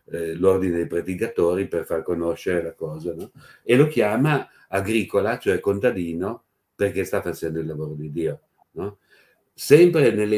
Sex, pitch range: male, 85-110 Hz